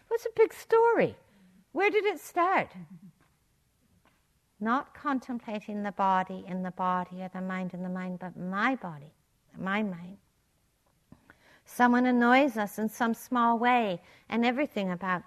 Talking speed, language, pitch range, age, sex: 140 wpm, English, 185-235 Hz, 60-79, female